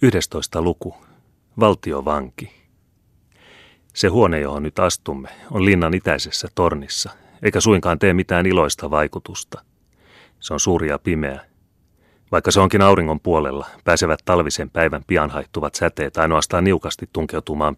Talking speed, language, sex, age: 125 wpm, Finnish, male, 30-49